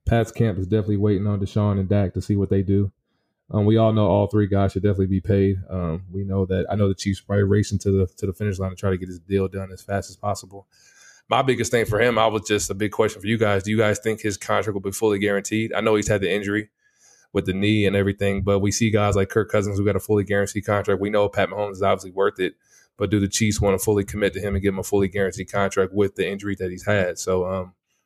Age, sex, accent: 20-39, male, American